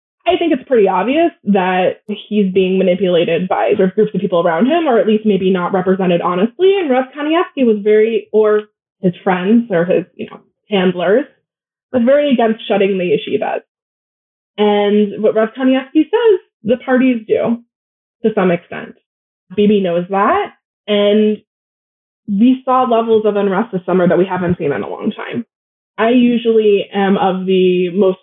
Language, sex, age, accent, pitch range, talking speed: English, female, 20-39, American, 185-240 Hz, 165 wpm